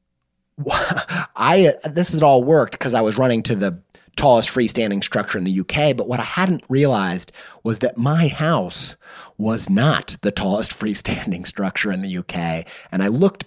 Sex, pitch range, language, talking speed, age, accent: male, 100-150 Hz, English, 170 wpm, 30-49, American